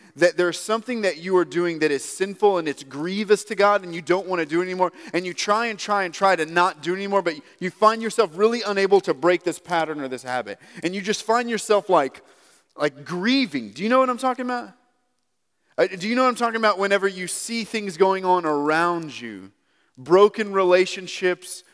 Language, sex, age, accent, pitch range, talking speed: English, male, 30-49, American, 140-190 Hz, 220 wpm